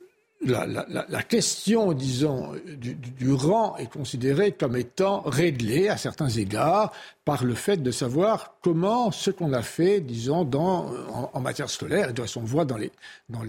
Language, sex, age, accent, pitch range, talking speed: French, male, 60-79, French, 130-190 Hz, 165 wpm